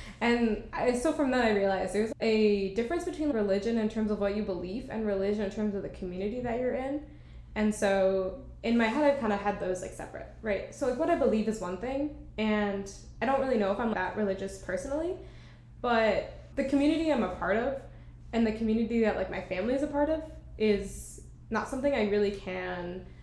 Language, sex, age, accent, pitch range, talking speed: English, female, 10-29, American, 195-255 Hz, 210 wpm